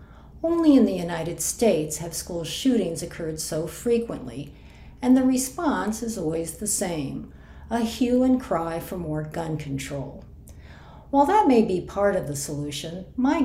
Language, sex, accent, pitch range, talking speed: English, female, American, 165-240 Hz, 155 wpm